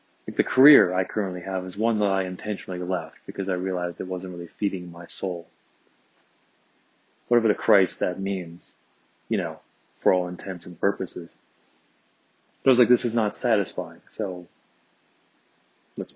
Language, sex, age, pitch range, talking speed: English, male, 30-49, 90-115 Hz, 150 wpm